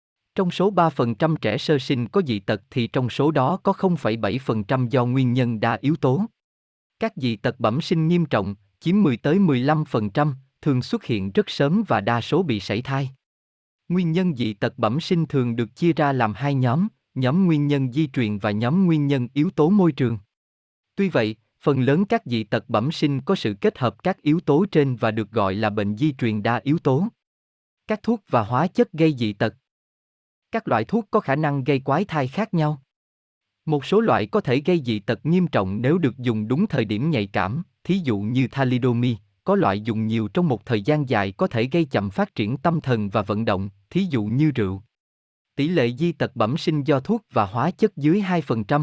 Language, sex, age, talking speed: Vietnamese, male, 20-39, 210 wpm